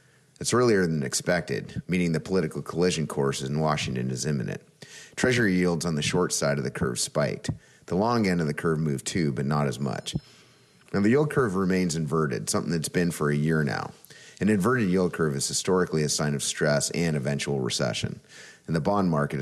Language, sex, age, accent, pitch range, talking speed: English, male, 30-49, American, 70-90 Hz, 200 wpm